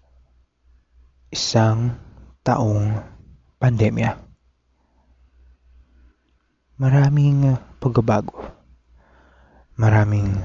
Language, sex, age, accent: Filipino, male, 20-39, native